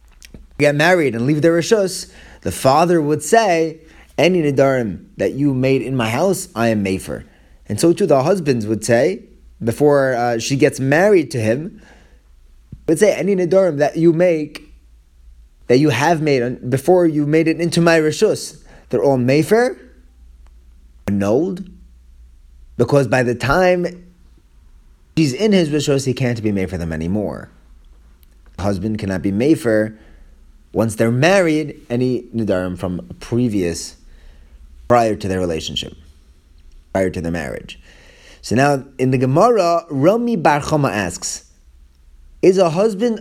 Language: English